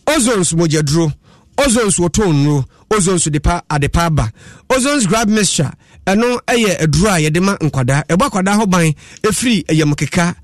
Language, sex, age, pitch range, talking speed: English, male, 30-49, 150-200 Hz, 155 wpm